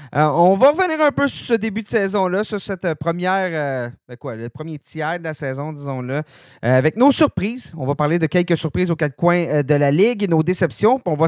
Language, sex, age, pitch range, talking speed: French, male, 30-49, 130-175 Hz, 250 wpm